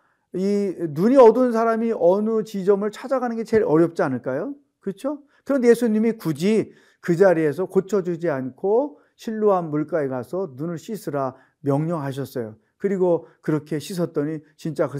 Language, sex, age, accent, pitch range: Korean, male, 40-59, native, 145-205 Hz